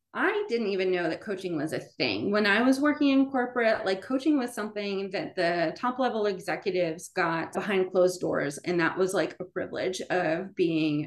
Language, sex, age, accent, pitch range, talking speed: English, female, 20-39, American, 175-235 Hz, 195 wpm